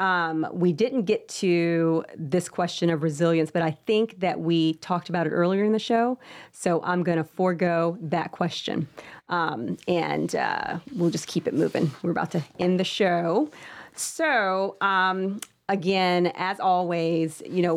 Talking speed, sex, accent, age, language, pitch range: 165 wpm, female, American, 40-59, English, 165-205 Hz